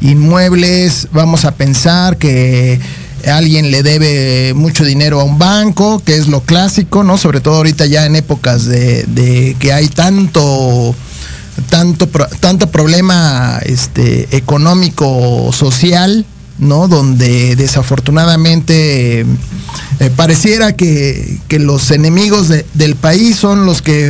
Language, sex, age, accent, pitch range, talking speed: Spanish, male, 40-59, Mexican, 140-185 Hz, 110 wpm